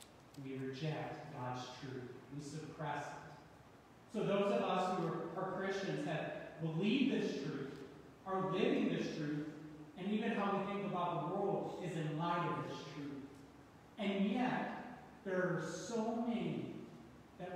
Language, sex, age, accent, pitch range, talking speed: English, male, 30-49, American, 140-180 Hz, 150 wpm